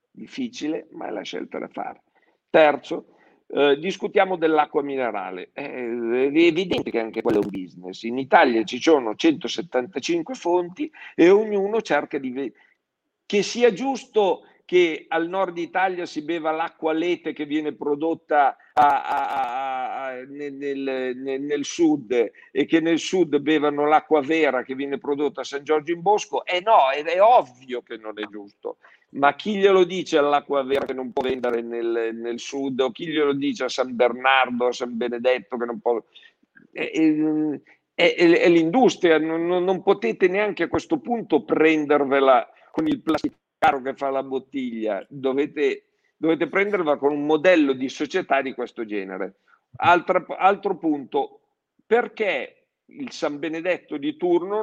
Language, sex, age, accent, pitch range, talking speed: Italian, male, 50-69, native, 135-210 Hz, 160 wpm